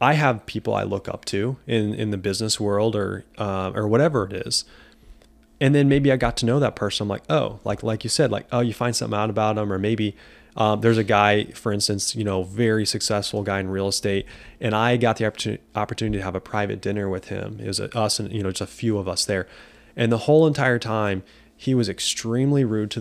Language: English